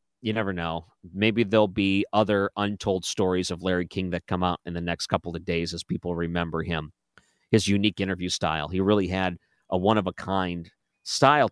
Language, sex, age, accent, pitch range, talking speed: English, male, 40-59, American, 85-110 Hz, 200 wpm